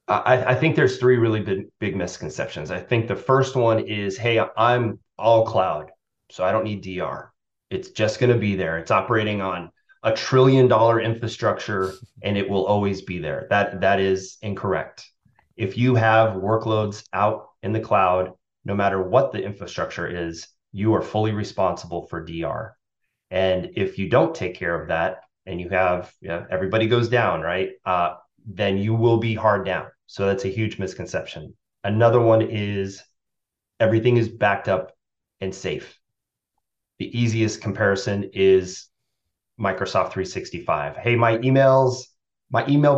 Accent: American